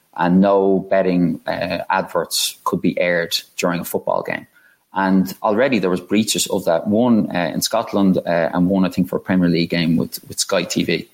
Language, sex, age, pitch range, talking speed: English, male, 30-49, 90-100 Hz, 200 wpm